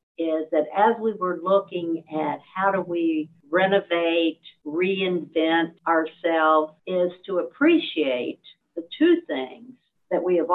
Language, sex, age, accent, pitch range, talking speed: English, female, 50-69, American, 155-195 Hz, 125 wpm